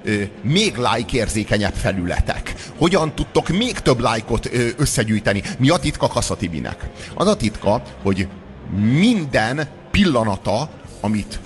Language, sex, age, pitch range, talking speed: Hungarian, male, 30-49, 105-140 Hz, 110 wpm